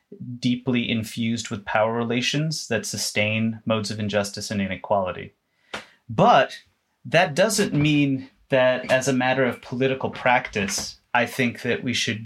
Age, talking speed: 30-49, 135 wpm